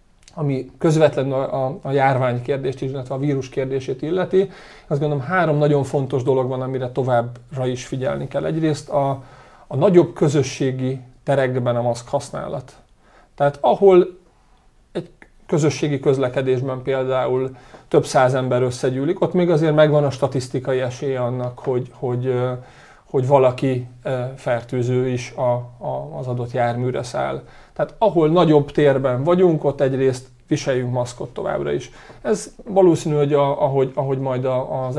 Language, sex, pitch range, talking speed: Hungarian, male, 130-150 Hz, 135 wpm